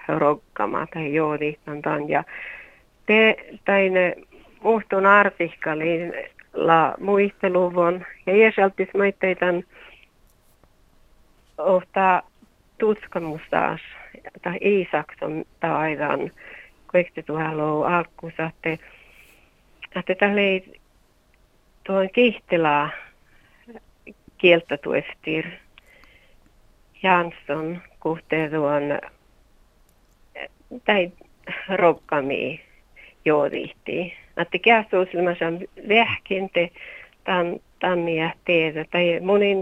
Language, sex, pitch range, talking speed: Czech, female, 160-190 Hz, 65 wpm